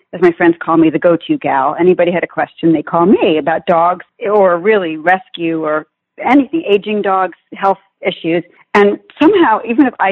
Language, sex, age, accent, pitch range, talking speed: English, female, 40-59, American, 165-205 Hz, 185 wpm